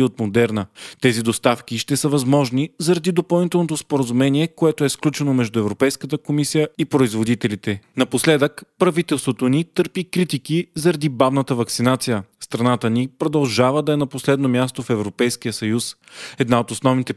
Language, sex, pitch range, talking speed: Bulgarian, male, 120-150 Hz, 140 wpm